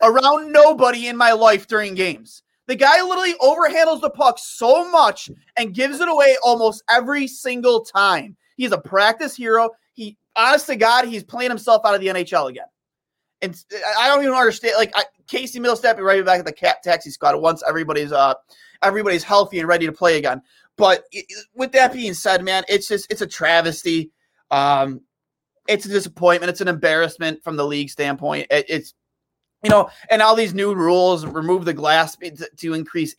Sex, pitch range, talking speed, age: male, 170-240 Hz, 185 wpm, 30-49